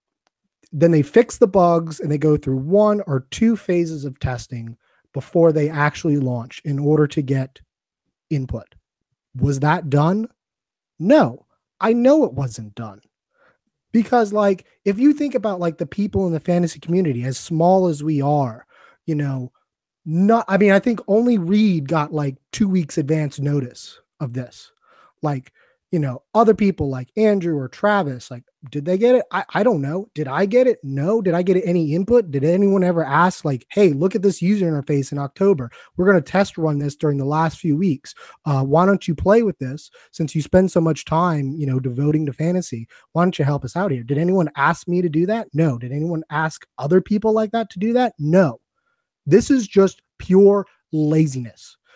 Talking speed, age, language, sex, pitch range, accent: 195 wpm, 20-39, English, male, 145-200 Hz, American